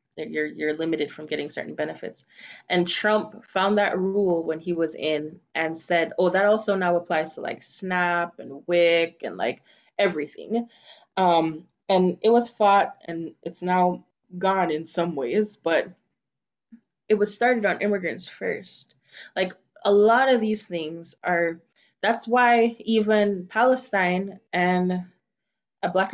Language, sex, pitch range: English, female, 170-215 Hz